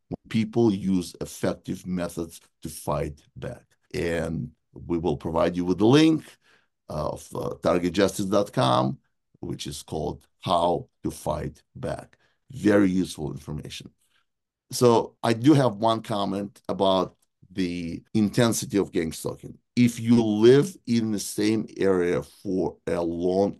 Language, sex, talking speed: English, male, 125 wpm